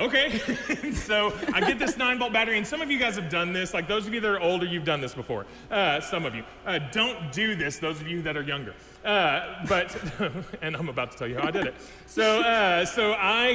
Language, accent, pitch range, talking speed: English, American, 170-220 Hz, 250 wpm